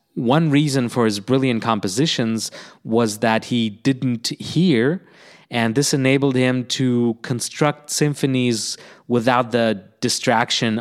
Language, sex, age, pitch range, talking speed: English, male, 30-49, 115-135 Hz, 115 wpm